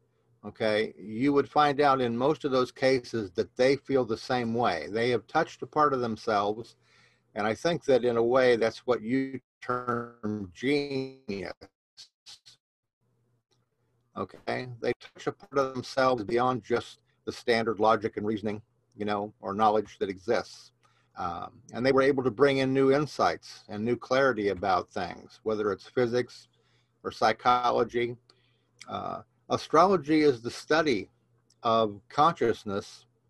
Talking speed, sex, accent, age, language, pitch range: 145 wpm, male, American, 50-69, English, 110-130 Hz